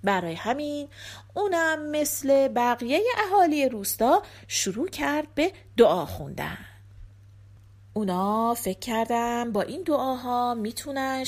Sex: female